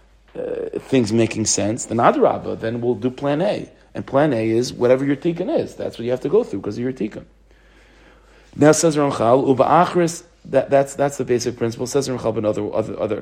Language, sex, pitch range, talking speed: English, male, 105-140 Hz, 200 wpm